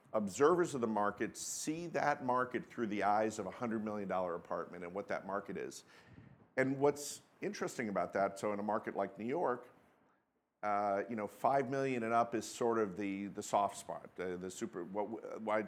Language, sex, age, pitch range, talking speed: English, male, 50-69, 105-130 Hz, 200 wpm